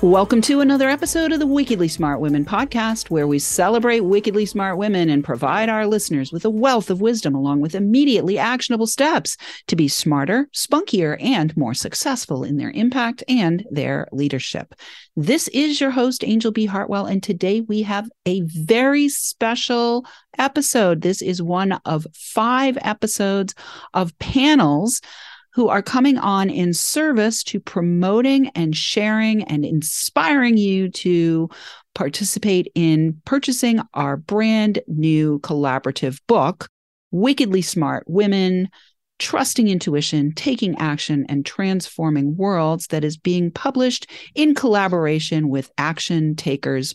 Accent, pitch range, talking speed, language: American, 160-235 Hz, 135 wpm, English